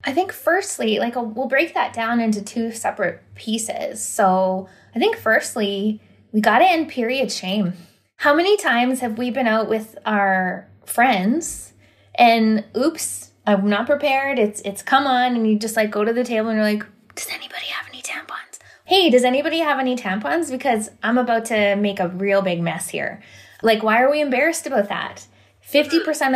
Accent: American